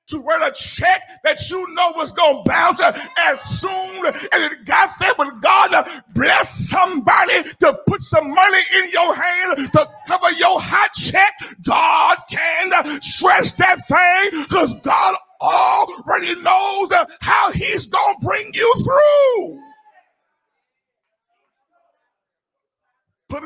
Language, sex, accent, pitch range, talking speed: English, male, American, 275-360 Hz, 135 wpm